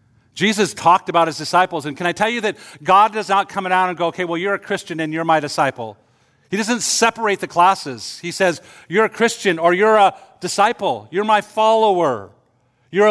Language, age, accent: English, 50-69, American